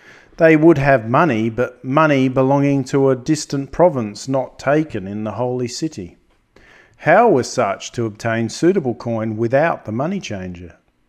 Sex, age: male, 40-59